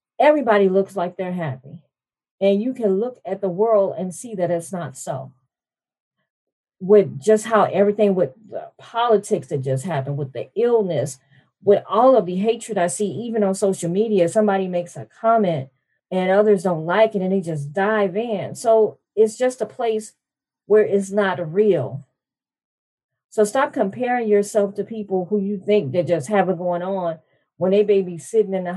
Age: 40-59